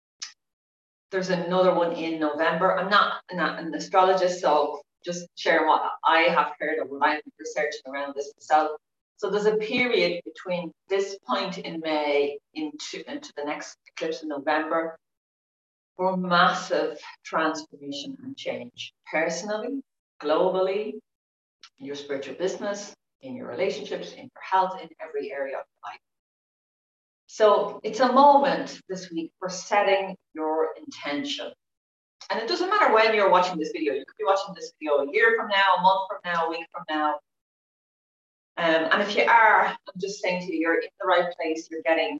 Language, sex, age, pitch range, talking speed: English, female, 40-59, 145-195 Hz, 170 wpm